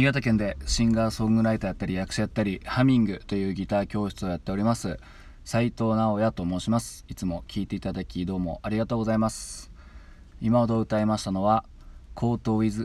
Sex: male